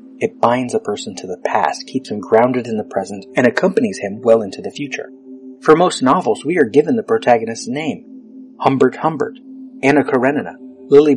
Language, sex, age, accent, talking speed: English, male, 30-49, American, 185 wpm